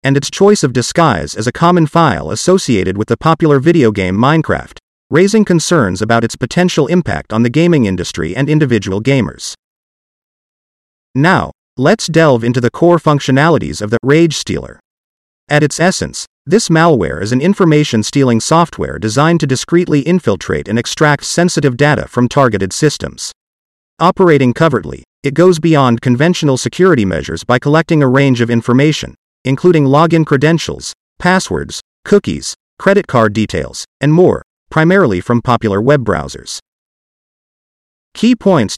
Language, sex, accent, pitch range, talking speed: English, male, American, 115-165 Hz, 140 wpm